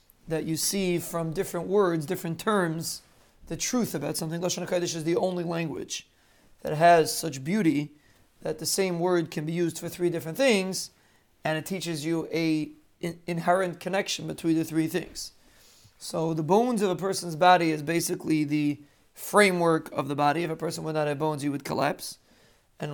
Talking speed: 180 wpm